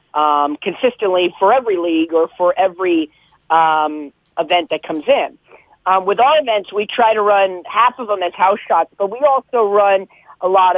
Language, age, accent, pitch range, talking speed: English, 40-59, American, 175-220 Hz, 185 wpm